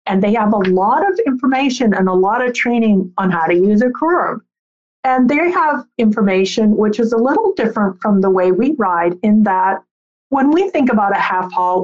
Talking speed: 210 wpm